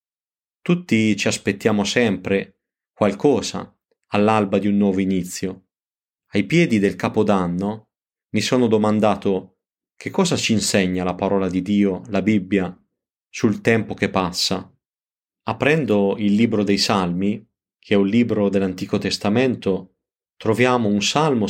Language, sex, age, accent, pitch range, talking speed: Italian, male, 30-49, native, 95-110 Hz, 125 wpm